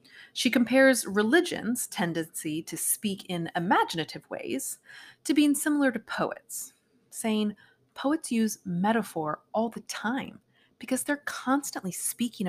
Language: English